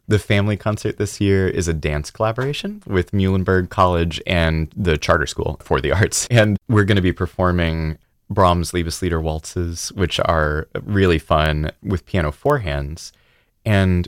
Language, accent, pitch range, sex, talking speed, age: English, American, 75-95 Hz, male, 155 wpm, 30-49